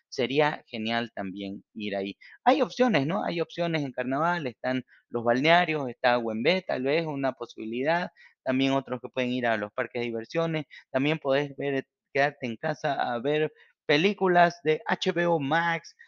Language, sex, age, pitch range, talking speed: Spanish, male, 30-49, 120-160 Hz, 155 wpm